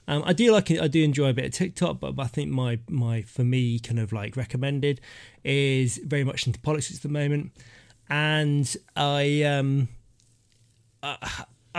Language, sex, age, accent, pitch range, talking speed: English, male, 20-39, British, 120-145 Hz, 180 wpm